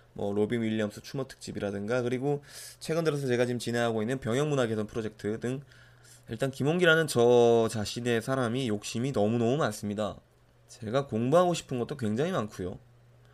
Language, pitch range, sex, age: Korean, 110-140 Hz, male, 20-39